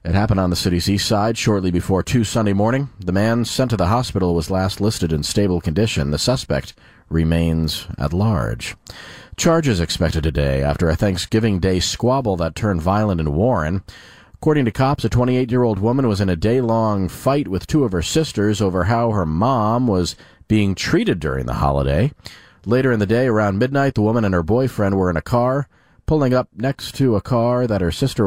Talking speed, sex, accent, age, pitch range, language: 195 wpm, male, American, 40-59, 85-120 Hz, English